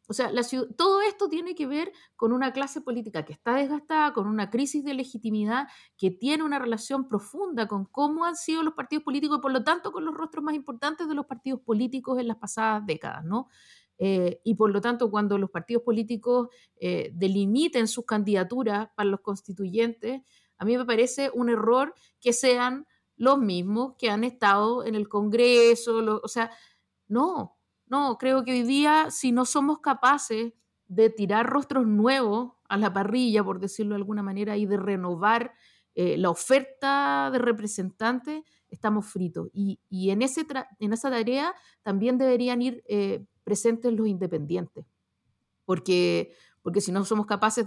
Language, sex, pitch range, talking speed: Spanish, female, 205-265 Hz, 170 wpm